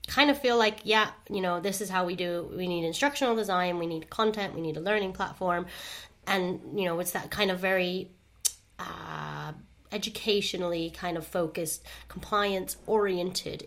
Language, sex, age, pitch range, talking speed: English, female, 30-49, 170-205 Hz, 170 wpm